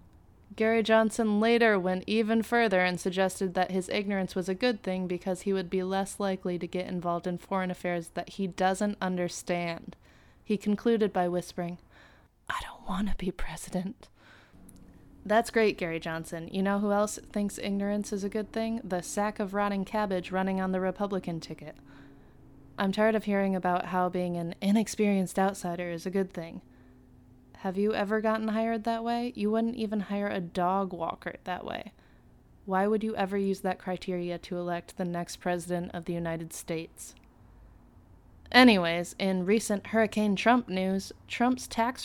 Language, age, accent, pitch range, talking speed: English, 20-39, American, 175-210 Hz, 170 wpm